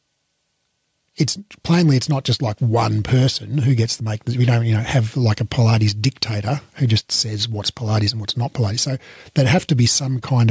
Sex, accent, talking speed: male, Australian, 215 wpm